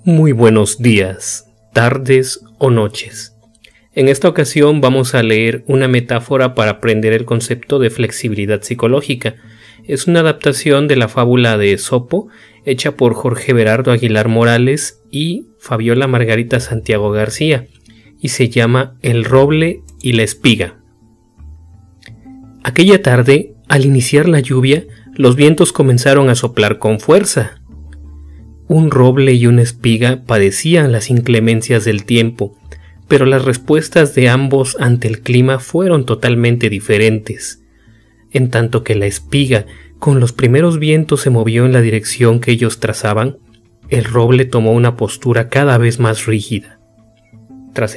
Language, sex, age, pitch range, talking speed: Spanish, male, 40-59, 110-135 Hz, 135 wpm